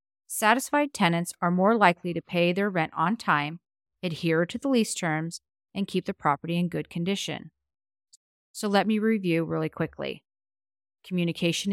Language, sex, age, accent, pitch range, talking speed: English, female, 40-59, American, 160-195 Hz, 155 wpm